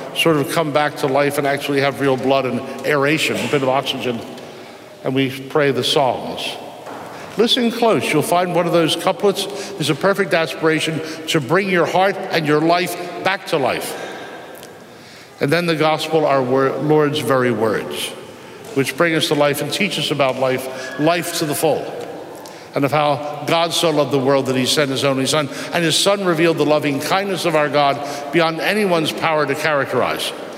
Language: English